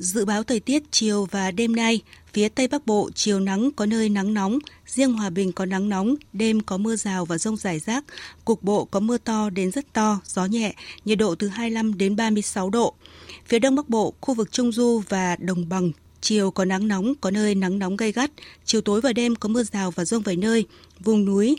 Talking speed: 240 wpm